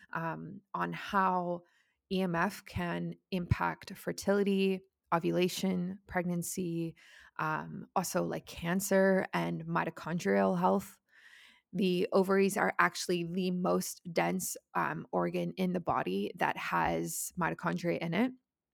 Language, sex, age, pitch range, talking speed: English, female, 20-39, 170-195 Hz, 105 wpm